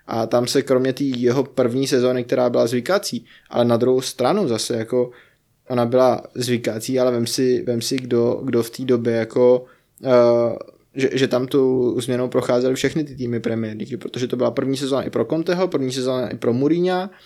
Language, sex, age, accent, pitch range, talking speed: Czech, male, 20-39, native, 120-135 Hz, 190 wpm